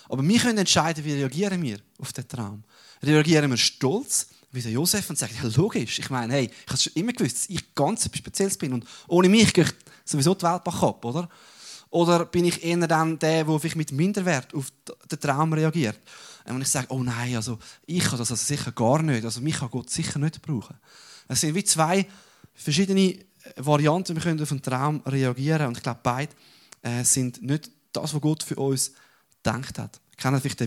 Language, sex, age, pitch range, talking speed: German, male, 20-39, 120-160 Hz, 215 wpm